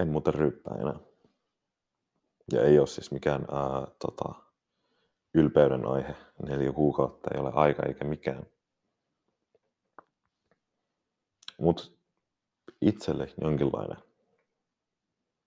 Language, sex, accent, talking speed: Finnish, male, native, 85 wpm